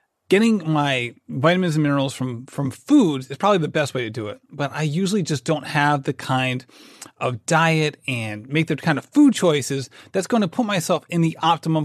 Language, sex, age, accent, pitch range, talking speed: English, male, 30-49, American, 140-185 Hz, 210 wpm